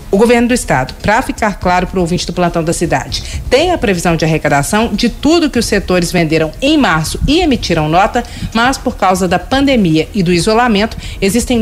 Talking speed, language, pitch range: 200 wpm, Portuguese, 185-250 Hz